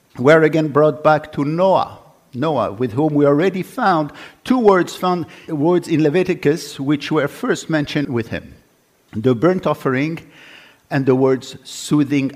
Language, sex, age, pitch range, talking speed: English, male, 50-69, 120-170 Hz, 150 wpm